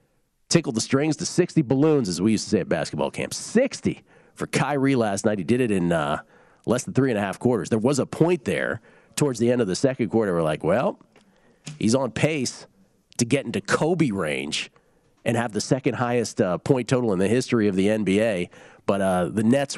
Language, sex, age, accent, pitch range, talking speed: English, male, 40-59, American, 115-155 Hz, 220 wpm